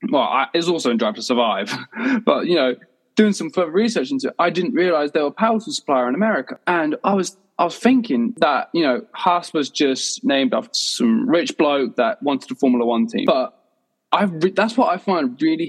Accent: British